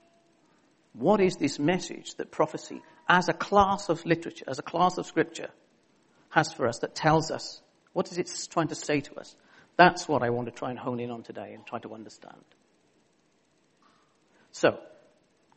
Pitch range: 125-165 Hz